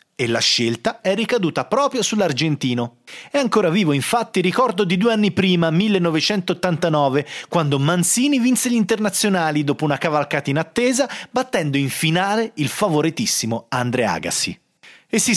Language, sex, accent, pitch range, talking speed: Italian, male, native, 145-225 Hz, 140 wpm